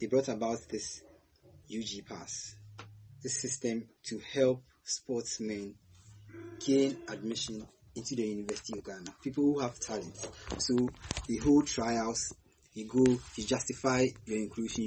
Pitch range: 105-135 Hz